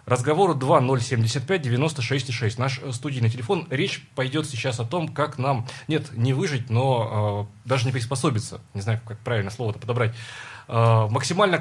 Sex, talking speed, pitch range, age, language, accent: male, 160 wpm, 110-135 Hz, 20-39, Russian, native